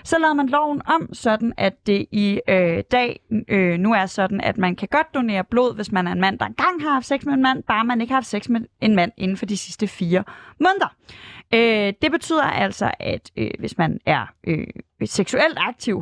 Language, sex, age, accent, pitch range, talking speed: Danish, female, 30-49, native, 200-265 Hz, 230 wpm